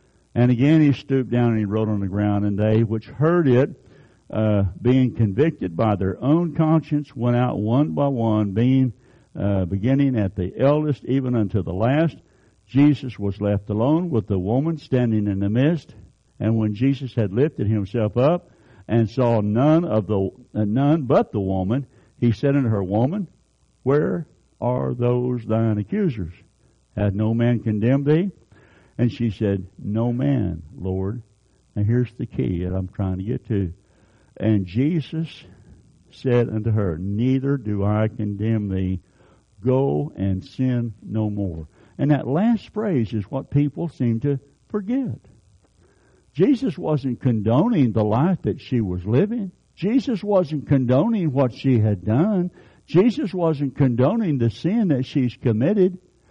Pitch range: 105-140 Hz